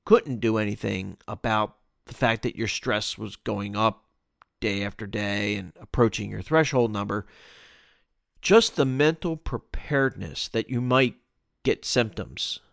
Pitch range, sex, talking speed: 105-135 Hz, male, 135 wpm